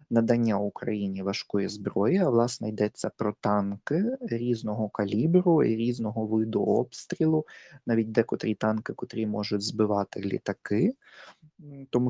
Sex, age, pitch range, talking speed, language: male, 20-39, 110-140 Hz, 115 wpm, Ukrainian